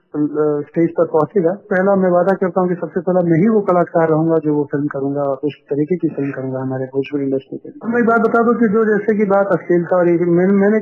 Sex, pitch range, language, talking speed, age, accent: male, 150-190 Hz, English, 240 wpm, 30-49, Indian